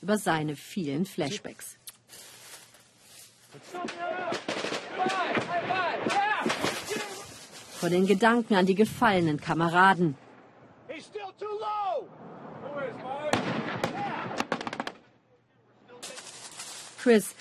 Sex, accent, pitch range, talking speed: female, German, 170-230 Hz, 40 wpm